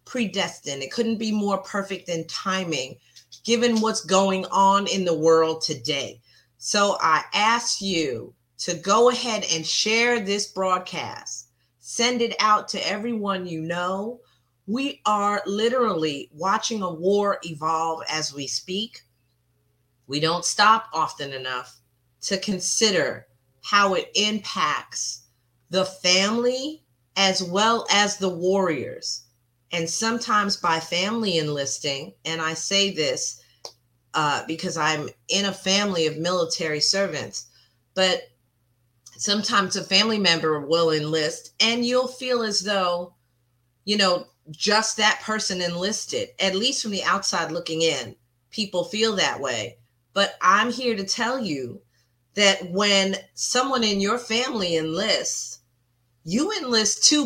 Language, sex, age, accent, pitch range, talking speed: English, female, 30-49, American, 145-210 Hz, 130 wpm